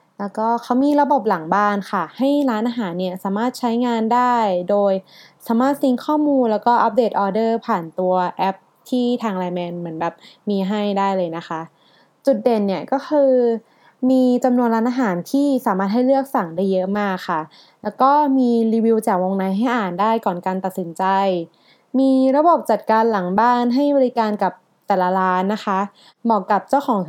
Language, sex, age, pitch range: Thai, female, 20-39, 190-245 Hz